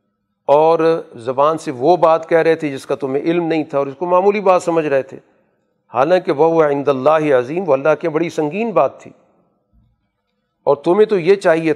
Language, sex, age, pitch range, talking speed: Urdu, male, 40-59, 135-175 Hz, 200 wpm